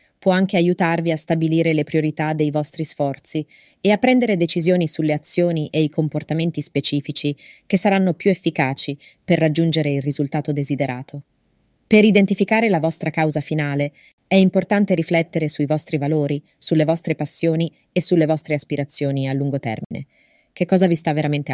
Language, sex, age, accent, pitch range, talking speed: Italian, female, 30-49, native, 150-185 Hz, 155 wpm